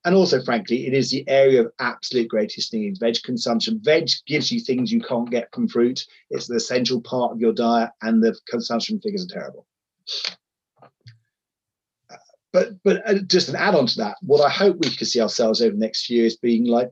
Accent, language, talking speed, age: British, English, 210 wpm, 30-49